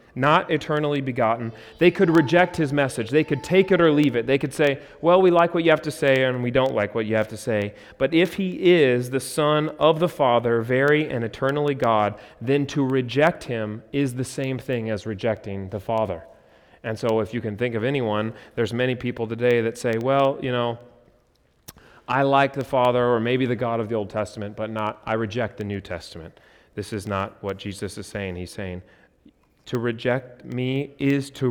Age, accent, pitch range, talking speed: 30-49, American, 105-135 Hz, 210 wpm